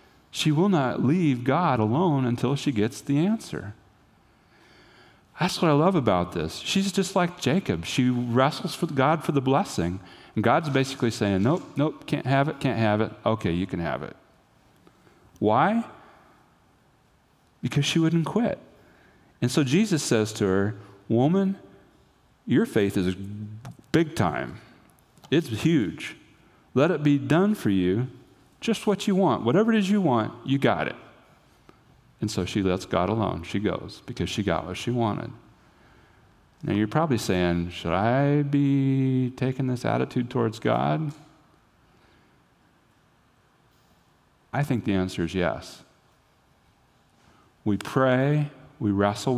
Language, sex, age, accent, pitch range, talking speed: English, male, 40-59, American, 100-145 Hz, 145 wpm